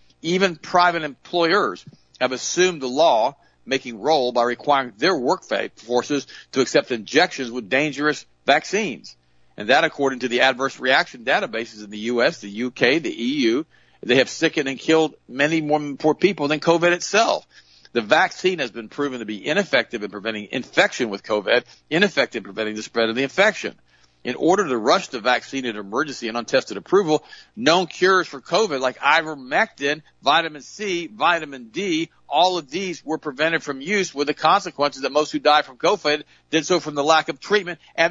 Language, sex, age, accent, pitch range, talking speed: English, male, 50-69, American, 125-175 Hz, 180 wpm